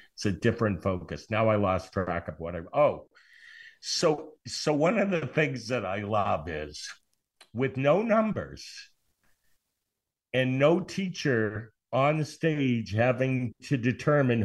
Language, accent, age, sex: English, American, 60-79, male